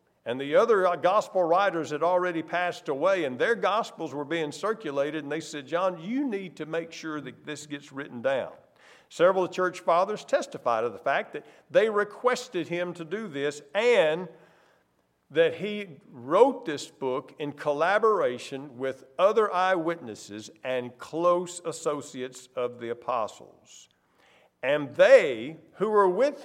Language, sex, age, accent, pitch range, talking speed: English, male, 50-69, American, 140-190 Hz, 145 wpm